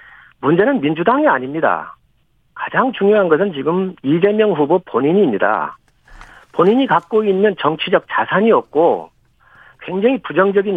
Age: 50-69